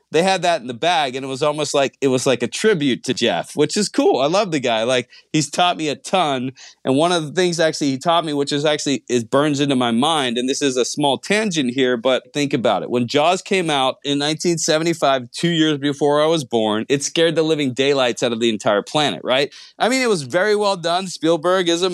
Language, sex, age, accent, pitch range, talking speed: English, male, 30-49, American, 145-185 Hz, 250 wpm